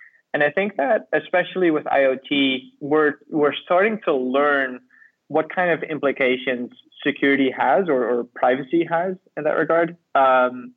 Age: 20-39